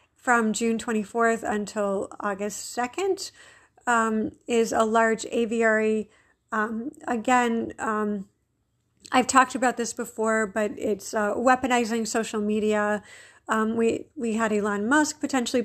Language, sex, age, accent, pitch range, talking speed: English, female, 50-69, American, 215-250 Hz, 125 wpm